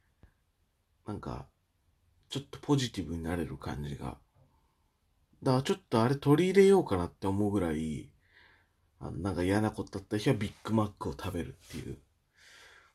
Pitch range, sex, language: 80-135 Hz, male, Japanese